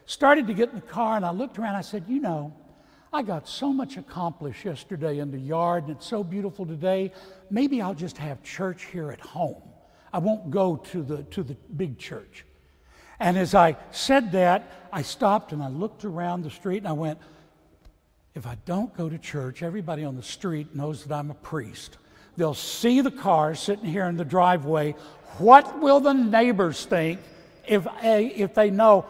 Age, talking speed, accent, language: 60-79, 195 wpm, American, English